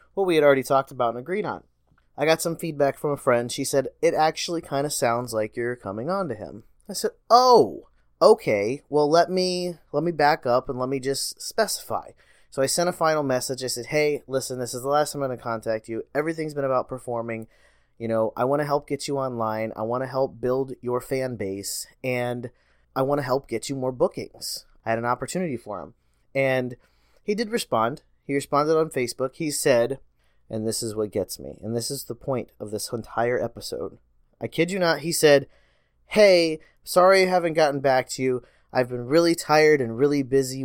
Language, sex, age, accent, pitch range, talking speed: English, male, 20-39, American, 120-160 Hz, 215 wpm